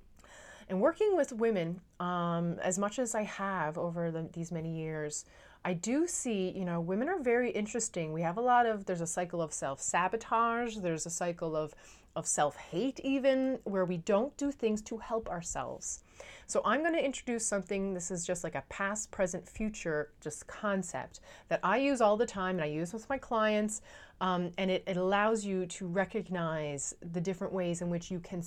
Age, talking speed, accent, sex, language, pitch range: 30-49, 195 wpm, American, female, English, 165-215 Hz